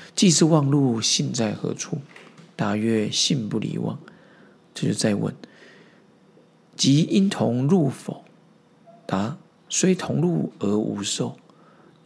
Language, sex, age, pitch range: Chinese, male, 50-69, 115-155 Hz